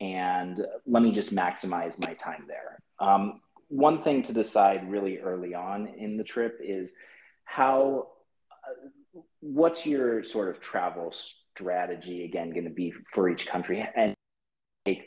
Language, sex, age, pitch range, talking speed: English, male, 30-49, 90-110 Hz, 145 wpm